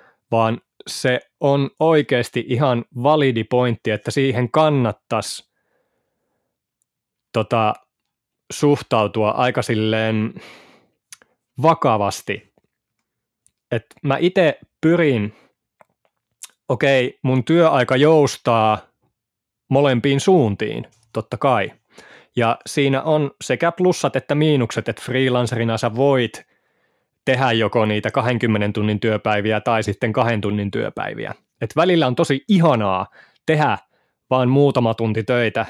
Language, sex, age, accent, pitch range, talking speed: Finnish, male, 20-39, native, 115-150 Hz, 100 wpm